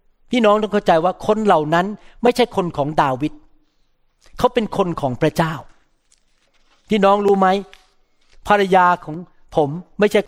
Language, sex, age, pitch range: Thai, male, 60-79, 170-230 Hz